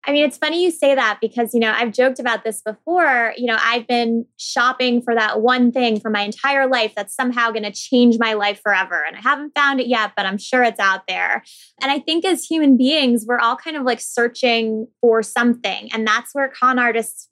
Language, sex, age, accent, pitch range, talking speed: English, female, 20-39, American, 215-255 Hz, 230 wpm